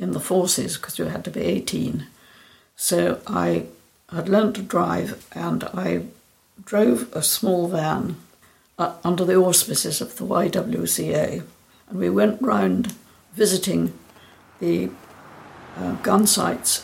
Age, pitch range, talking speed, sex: 60-79, 175-210 Hz, 130 wpm, female